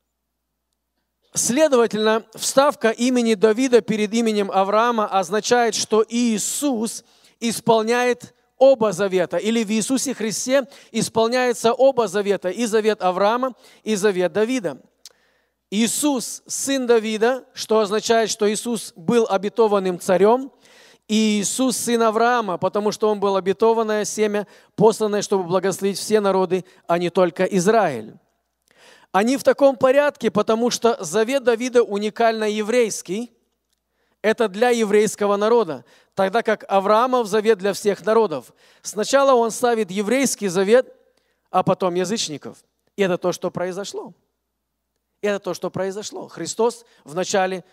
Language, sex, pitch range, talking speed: Russian, male, 190-235 Hz, 120 wpm